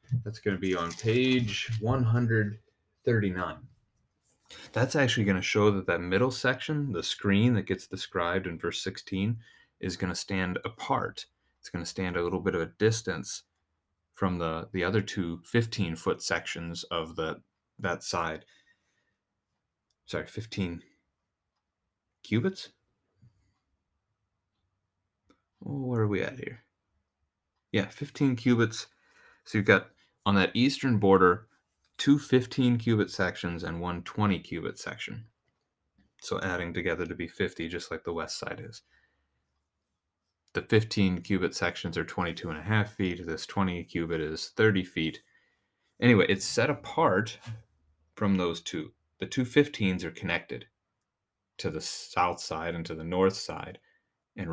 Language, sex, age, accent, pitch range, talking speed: English, male, 30-49, American, 85-110 Hz, 140 wpm